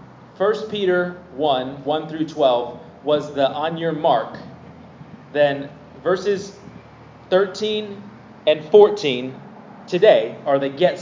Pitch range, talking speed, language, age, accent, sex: 145-205 Hz, 110 wpm, English, 30-49, American, male